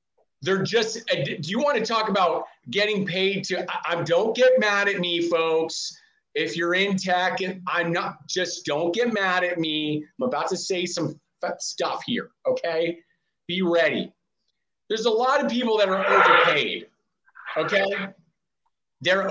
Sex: male